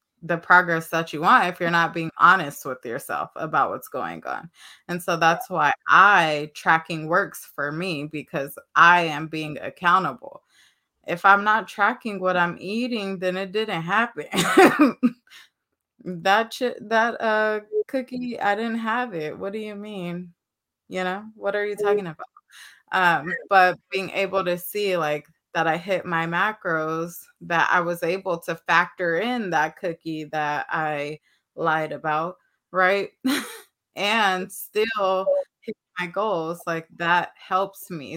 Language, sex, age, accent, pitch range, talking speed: English, female, 20-39, American, 165-205 Hz, 150 wpm